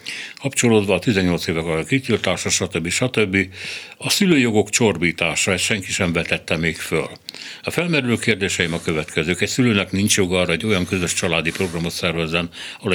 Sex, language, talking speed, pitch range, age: male, Hungarian, 160 wpm, 85-105 Hz, 60-79